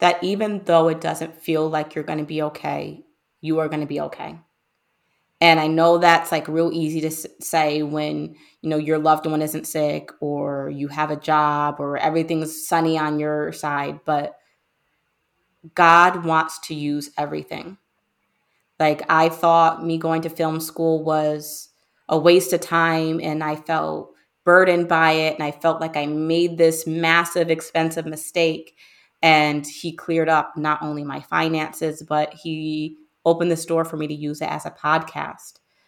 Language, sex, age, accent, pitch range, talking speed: English, female, 20-39, American, 150-165 Hz, 170 wpm